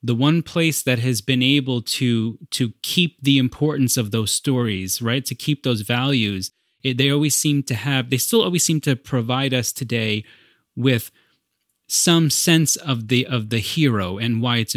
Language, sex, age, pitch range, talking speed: English, male, 30-49, 115-150 Hz, 180 wpm